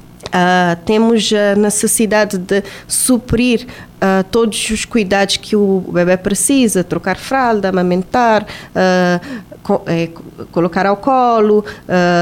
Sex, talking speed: female, 120 wpm